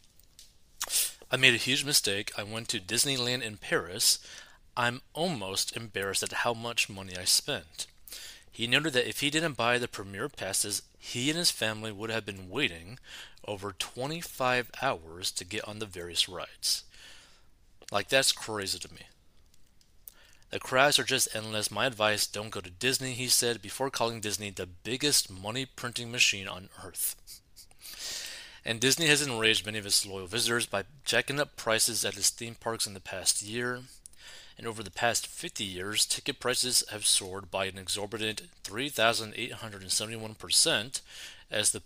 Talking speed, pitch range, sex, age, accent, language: 160 wpm, 100-125 Hz, male, 30-49, American, English